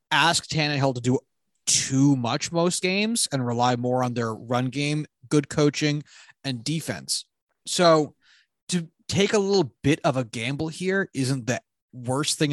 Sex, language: male, English